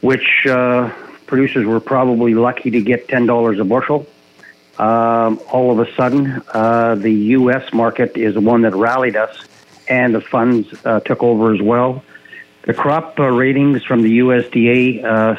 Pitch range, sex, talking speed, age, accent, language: 115-130 Hz, male, 165 wpm, 50-69, American, English